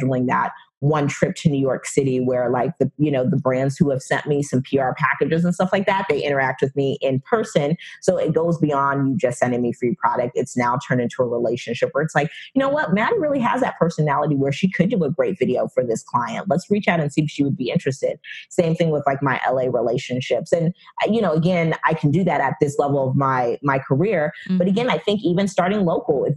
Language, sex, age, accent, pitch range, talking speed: English, female, 30-49, American, 135-175 Hz, 245 wpm